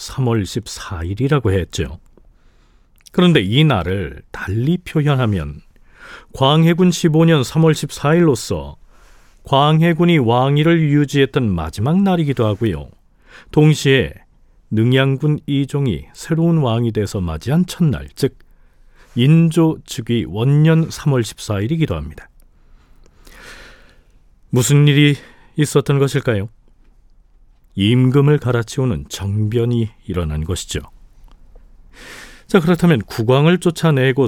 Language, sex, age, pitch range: Korean, male, 40-59, 100-155 Hz